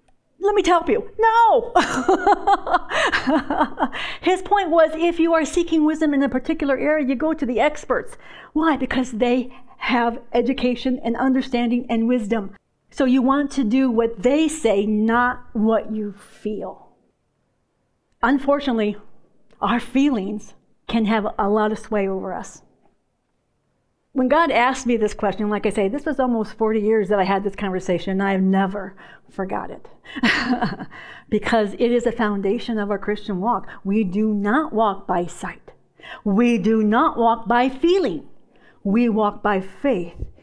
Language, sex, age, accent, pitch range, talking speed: English, female, 50-69, American, 210-275 Hz, 155 wpm